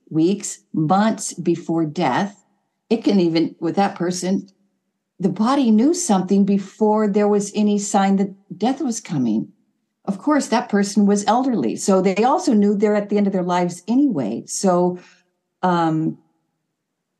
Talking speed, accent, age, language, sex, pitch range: 150 wpm, American, 50-69, German, female, 155-200 Hz